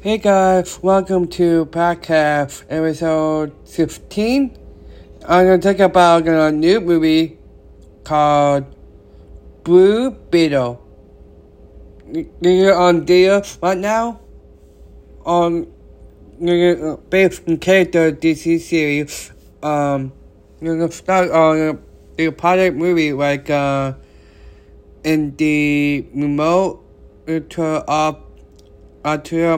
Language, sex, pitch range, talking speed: English, male, 120-165 Hz, 90 wpm